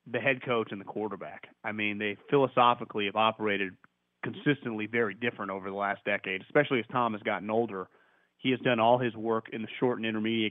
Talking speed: 205 wpm